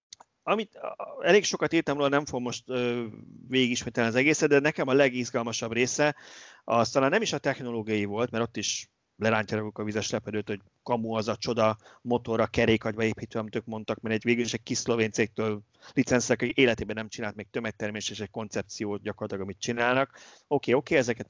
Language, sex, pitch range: Hungarian, male, 110-135 Hz